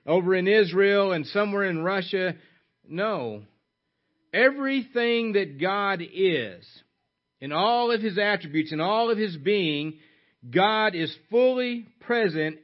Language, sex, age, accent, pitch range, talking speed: English, male, 50-69, American, 160-215 Hz, 125 wpm